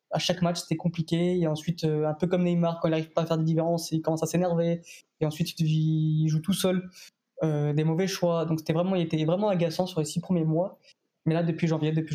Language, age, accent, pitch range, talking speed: French, 20-39, French, 155-170 Hz, 245 wpm